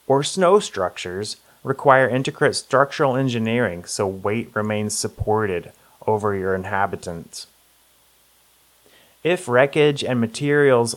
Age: 30-49